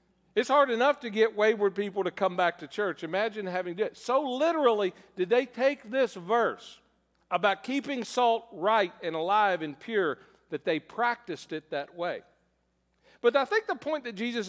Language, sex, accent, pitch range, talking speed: English, male, American, 200-260 Hz, 185 wpm